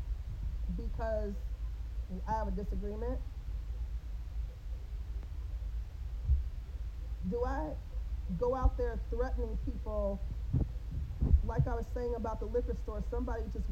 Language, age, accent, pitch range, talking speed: English, 40-59, American, 70-95 Hz, 95 wpm